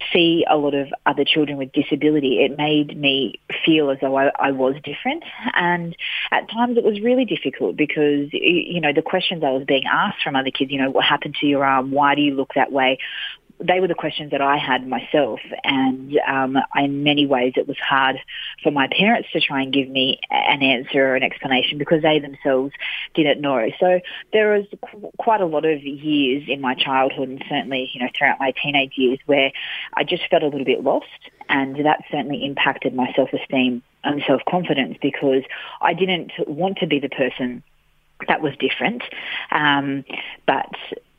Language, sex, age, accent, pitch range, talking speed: English, female, 30-49, Australian, 135-155 Hz, 190 wpm